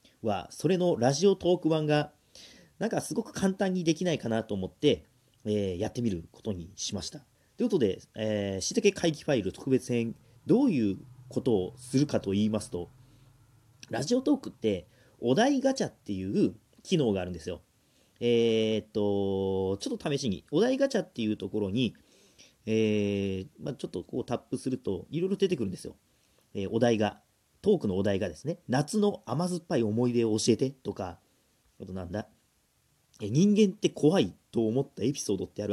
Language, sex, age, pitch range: Japanese, male, 40-59, 105-155 Hz